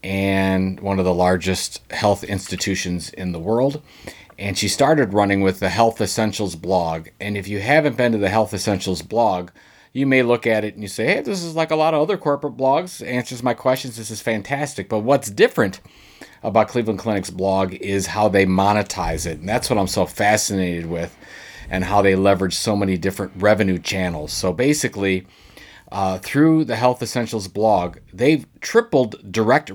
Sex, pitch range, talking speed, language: male, 95-120 Hz, 185 wpm, English